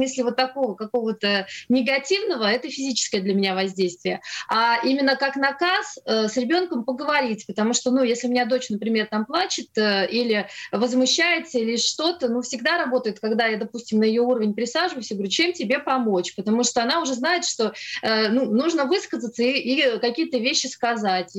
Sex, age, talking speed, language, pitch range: female, 30-49, 175 wpm, Russian, 210-260 Hz